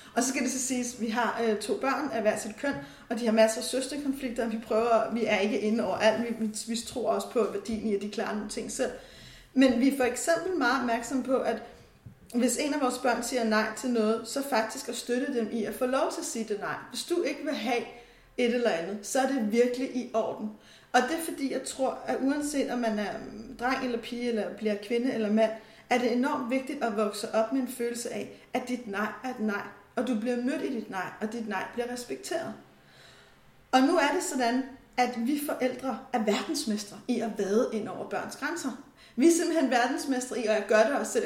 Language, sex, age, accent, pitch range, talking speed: Danish, female, 30-49, native, 225-260 Hz, 240 wpm